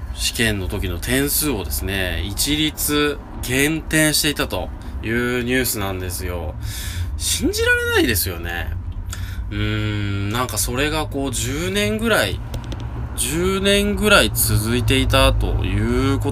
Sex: male